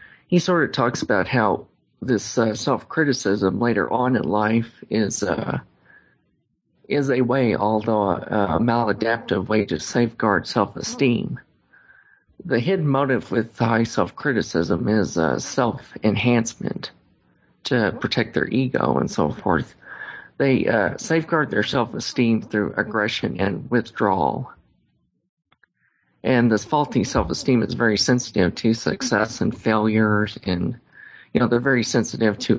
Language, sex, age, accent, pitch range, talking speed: English, male, 40-59, American, 105-125 Hz, 125 wpm